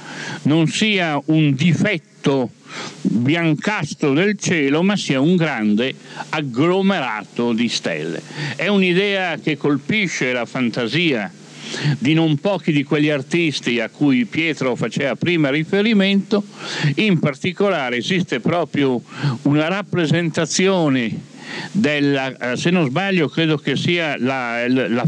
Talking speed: 110 wpm